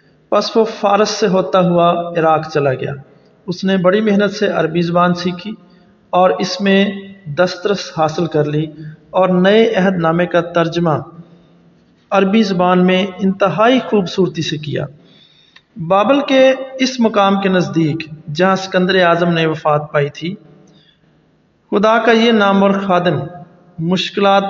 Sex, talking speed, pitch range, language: male, 125 wpm, 155-195 Hz, English